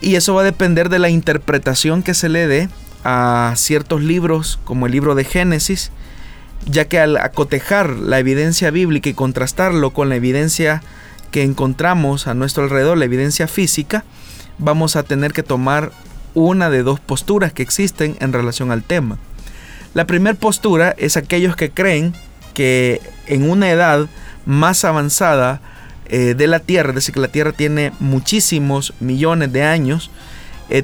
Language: Spanish